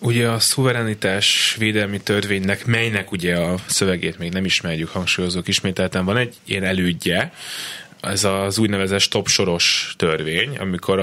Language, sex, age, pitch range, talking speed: Hungarian, male, 20-39, 85-95 Hz, 130 wpm